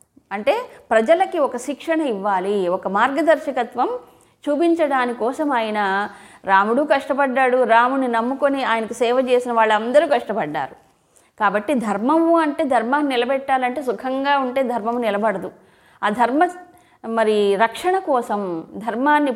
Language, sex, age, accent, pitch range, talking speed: Telugu, female, 20-39, native, 225-295 Hz, 105 wpm